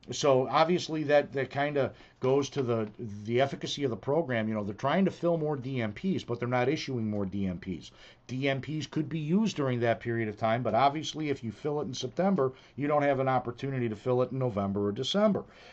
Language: English